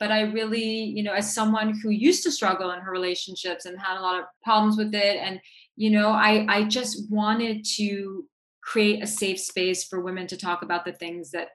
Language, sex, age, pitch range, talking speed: English, female, 30-49, 180-220 Hz, 220 wpm